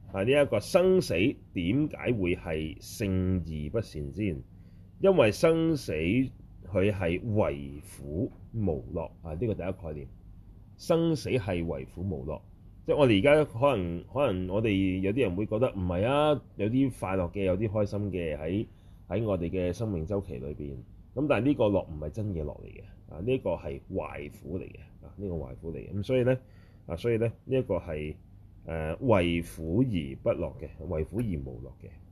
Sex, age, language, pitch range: male, 30-49, Chinese, 90-115 Hz